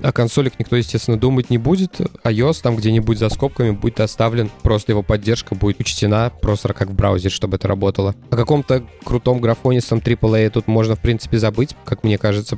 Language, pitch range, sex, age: Russian, 105-120 Hz, male, 20-39